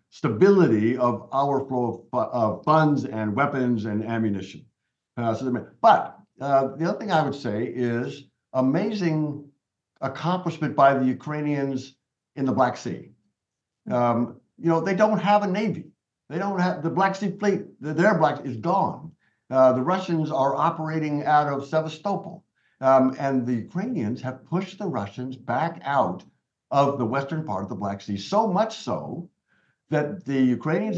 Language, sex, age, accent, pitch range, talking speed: English, male, 60-79, American, 125-170 Hz, 160 wpm